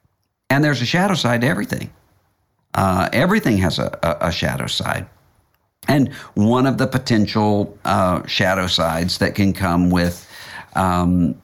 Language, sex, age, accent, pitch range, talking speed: English, male, 50-69, American, 90-120 Hz, 145 wpm